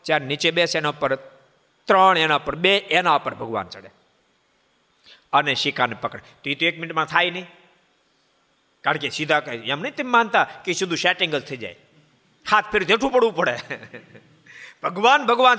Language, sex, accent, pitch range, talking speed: Gujarati, male, native, 165-215 Hz, 170 wpm